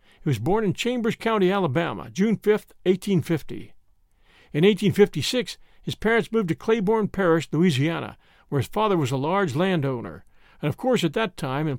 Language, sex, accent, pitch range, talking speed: English, male, American, 155-205 Hz, 170 wpm